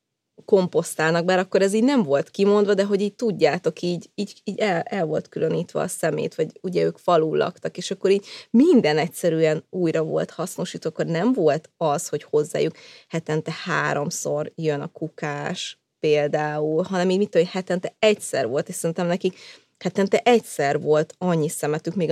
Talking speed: 170 wpm